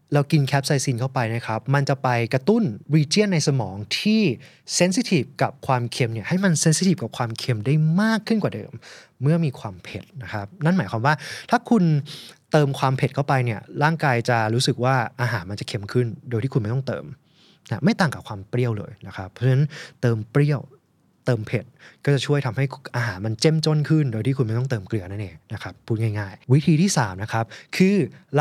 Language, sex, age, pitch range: Thai, male, 20-39, 120-155 Hz